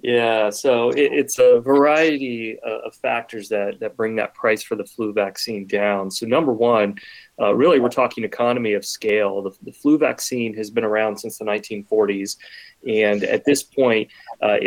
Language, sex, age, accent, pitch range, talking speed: English, male, 30-49, American, 105-145 Hz, 170 wpm